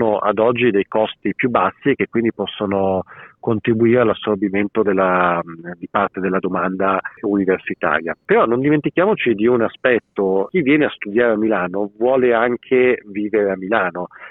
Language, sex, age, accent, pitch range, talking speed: Italian, male, 40-59, native, 105-125 Hz, 145 wpm